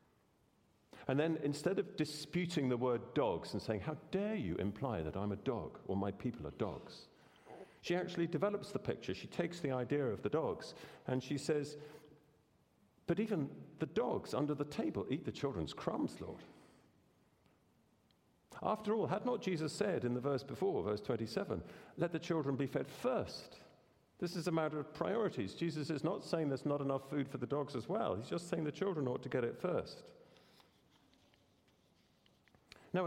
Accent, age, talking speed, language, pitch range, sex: British, 50-69, 180 wpm, English, 110-165 Hz, male